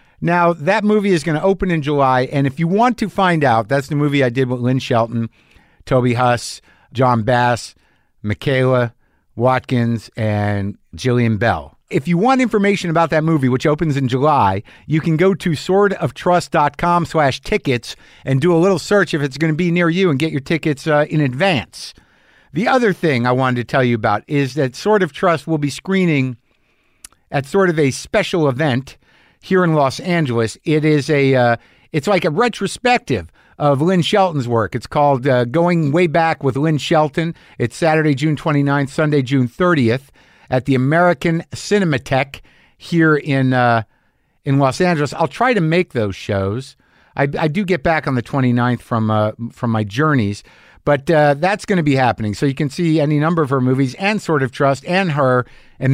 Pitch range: 125-170 Hz